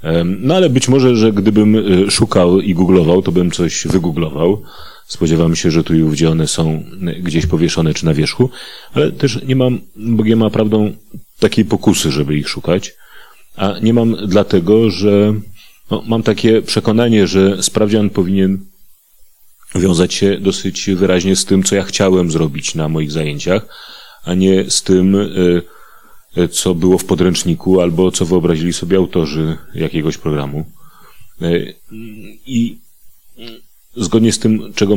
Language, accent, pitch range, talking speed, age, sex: Polish, native, 90-110 Hz, 140 wpm, 30-49, male